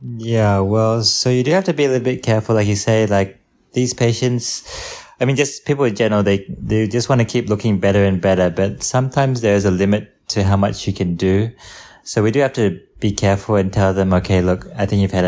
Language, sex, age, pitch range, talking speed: English, male, 20-39, 95-110 Hz, 245 wpm